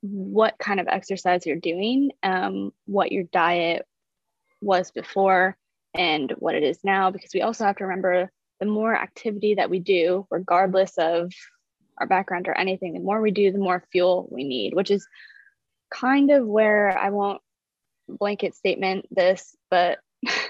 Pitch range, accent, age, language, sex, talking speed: 180-210 Hz, American, 20-39, English, female, 160 wpm